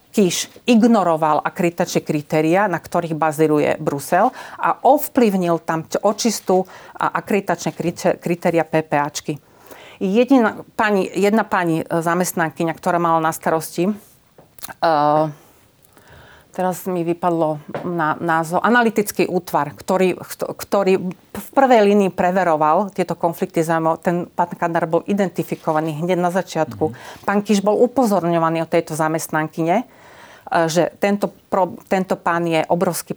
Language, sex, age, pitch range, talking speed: Slovak, female, 40-59, 165-190 Hz, 110 wpm